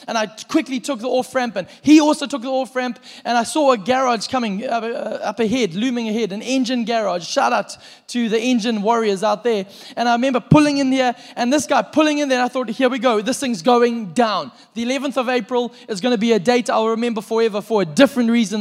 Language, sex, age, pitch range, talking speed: English, male, 20-39, 225-260 Hz, 225 wpm